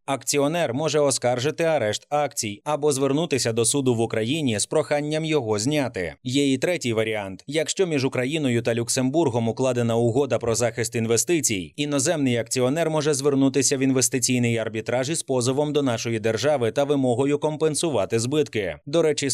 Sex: male